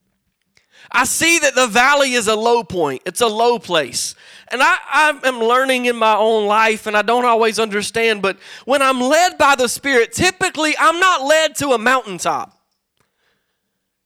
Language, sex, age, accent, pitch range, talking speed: English, male, 30-49, American, 220-290 Hz, 175 wpm